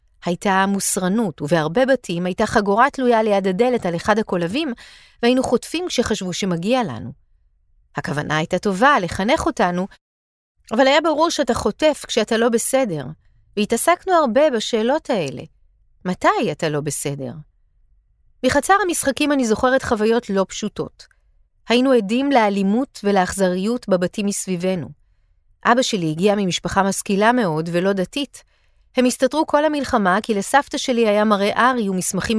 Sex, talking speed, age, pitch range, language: female, 130 wpm, 40-59, 175-245 Hz, Hebrew